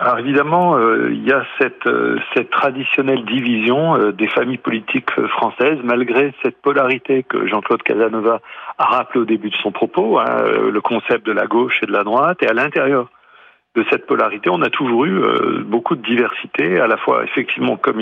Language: French